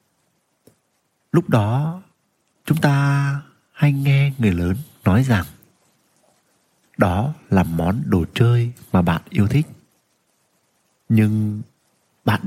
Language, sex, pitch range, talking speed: Vietnamese, male, 95-130 Hz, 100 wpm